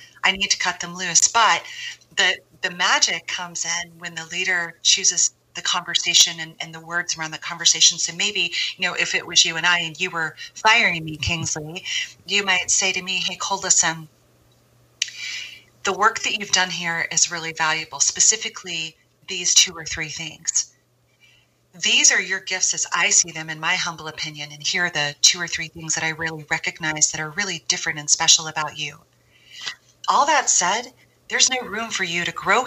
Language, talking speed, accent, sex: English, 195 wpm, American, female